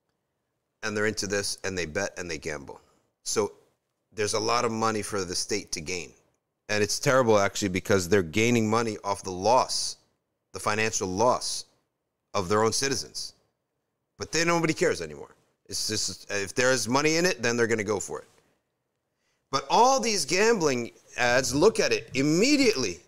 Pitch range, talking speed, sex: 105-170 Hz, 175 wpm, male